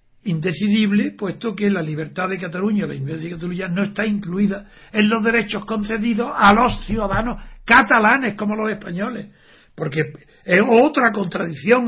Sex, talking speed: male, 145 wpm